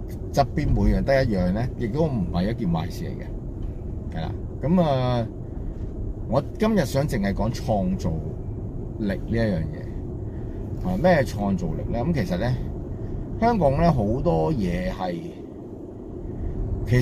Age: 30-49